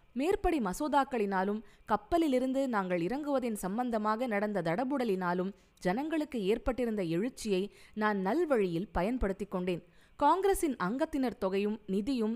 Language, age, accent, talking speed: Tamil, 20-39, native, 90 wpm